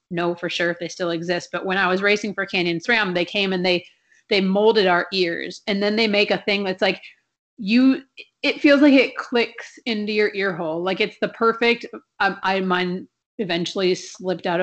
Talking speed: 210 wpm